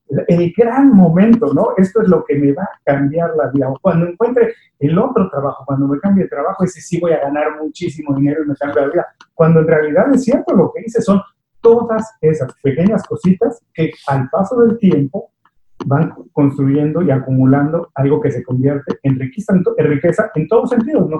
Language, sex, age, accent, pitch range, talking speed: Spanish, male, 40-59, Mexican, 145-195 Hz, 205 wpm